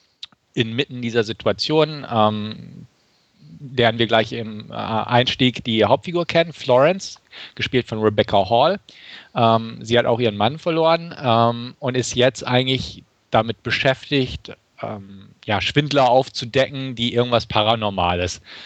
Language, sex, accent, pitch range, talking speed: German, male, German, 105-130 Hz, 120 wpm